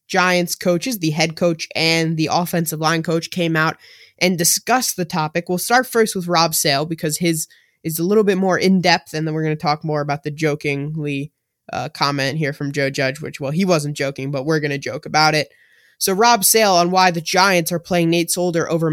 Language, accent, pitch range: English, American, 155-195 Hz